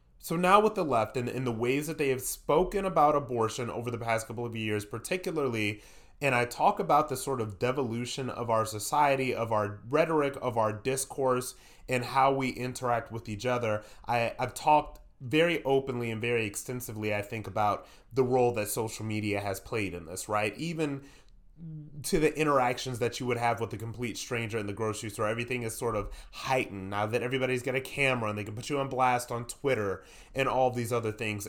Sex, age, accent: male, 30-49, American